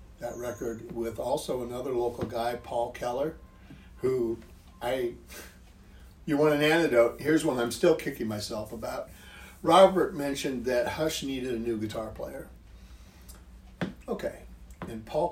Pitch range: 110-170 Hz